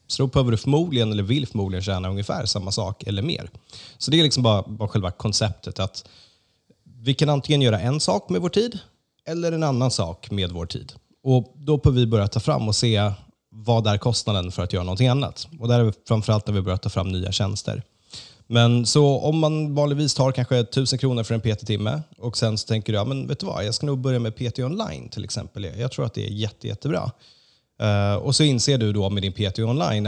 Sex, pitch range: male, 105-130 Hz